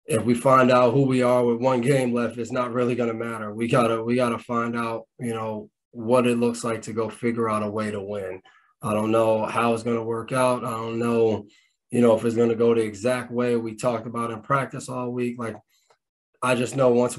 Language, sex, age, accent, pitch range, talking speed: English, male, 20-39, American, 110-120 Hz, 250 wpm